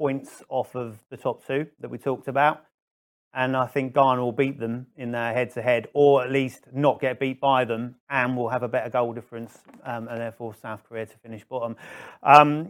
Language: English